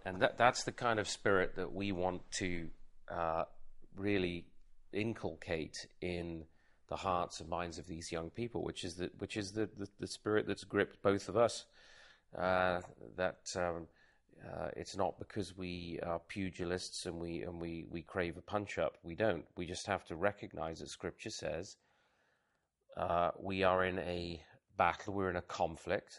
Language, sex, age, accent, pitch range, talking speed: English, male, 40-59, British, 85-105 Hz, 170 wpm